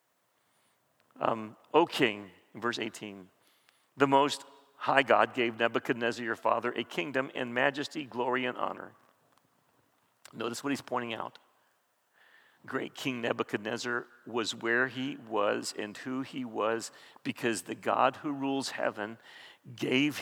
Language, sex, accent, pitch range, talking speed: English, male, American, 130-195 Hz, 130 wpm